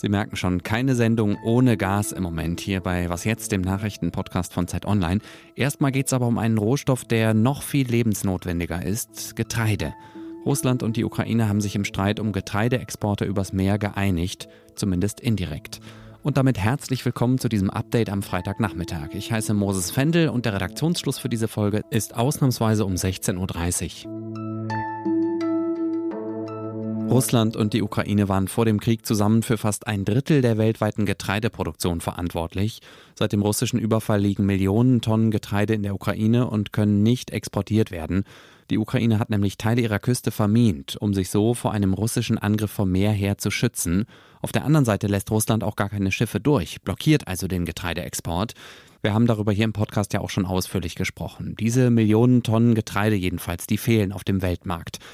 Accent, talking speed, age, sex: German, 175 wpm, 30-49, male